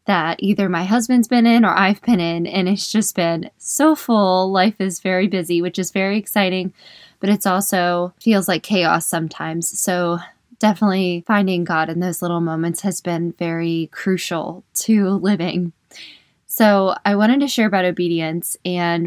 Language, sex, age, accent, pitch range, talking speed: English, female, 20-39, American, 170-205 Hz, 165 wpm